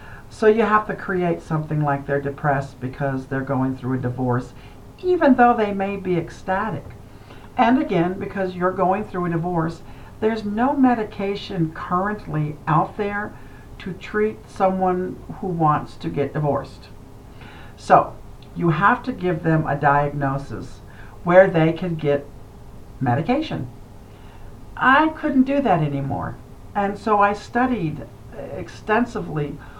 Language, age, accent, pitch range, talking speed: English, 60-79, American, 140-200 Hz, 135 wpm